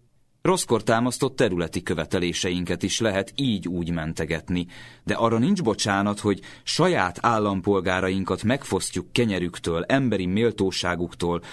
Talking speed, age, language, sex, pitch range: 105 wpm, 30-49, Hungarian, male, 85-120 Hz